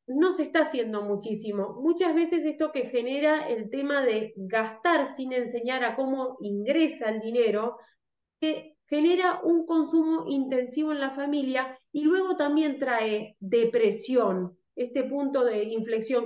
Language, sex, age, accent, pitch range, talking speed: Spanish, female, 20-39, Argentinian, 245-305 Hz, 140 wpm